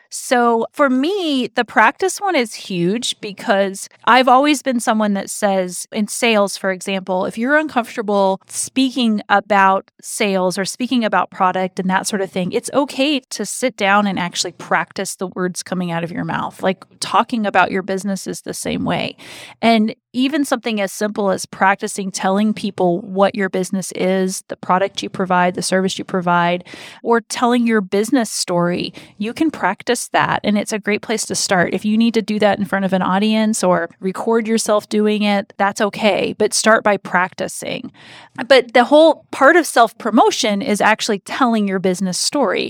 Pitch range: 190-230 Hz